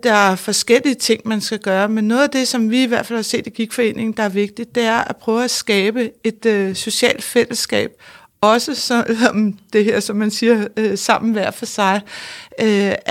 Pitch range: 215-245 Hz